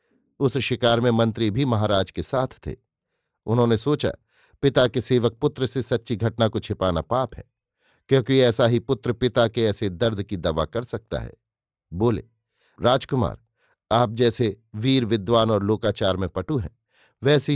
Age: 50-69